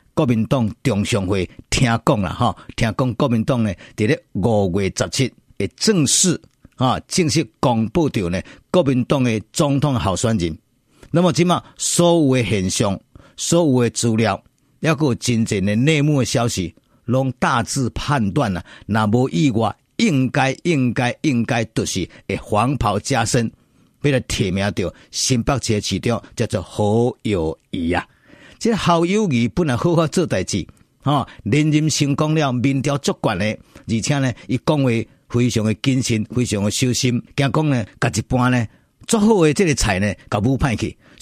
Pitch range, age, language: 110-145 Hz, 50-69, Chinese